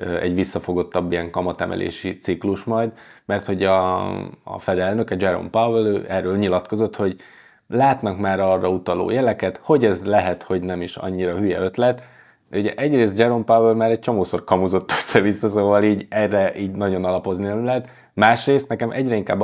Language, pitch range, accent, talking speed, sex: English, 95-110 Hz, Finnish, 160 wpm, male